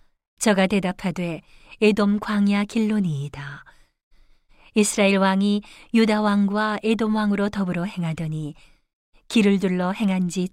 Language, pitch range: Korean, 180-215 Hz